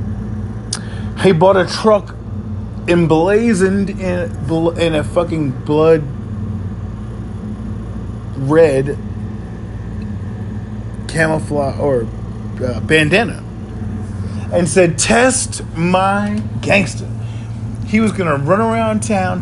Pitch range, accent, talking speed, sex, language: 110-135 Hz, American, 80 wpm, male, English